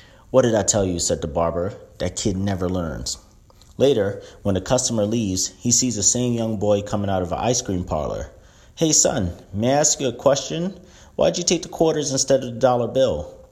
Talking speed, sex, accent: 215 wpm, male, American